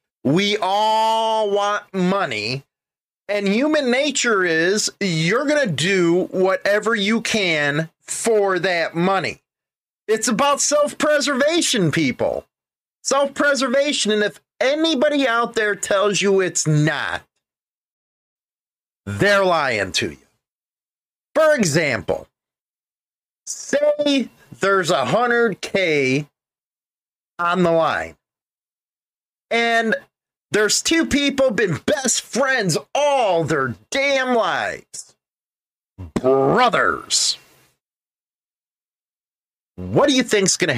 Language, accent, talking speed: English, American, 95 wpm